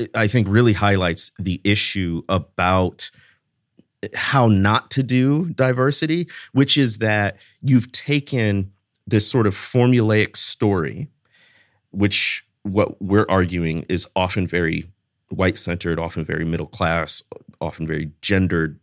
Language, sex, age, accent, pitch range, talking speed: English, male, 30-49, American, 95-125 Hz, 120 wpm